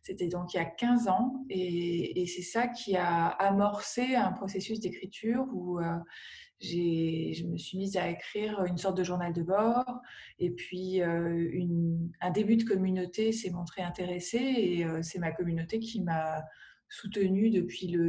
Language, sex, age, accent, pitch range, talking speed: French, female, 20-39, French, 170-205 Hz, 165 wpm